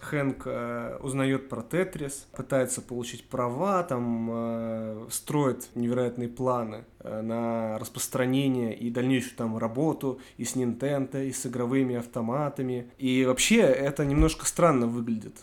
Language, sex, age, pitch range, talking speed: Russian, male, 20-39, 120-160 Hz, 125 wpm